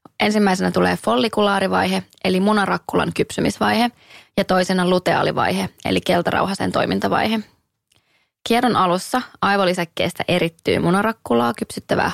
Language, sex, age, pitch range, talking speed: Finnish, female, 20-39, 175-210 Hz, 90 wpm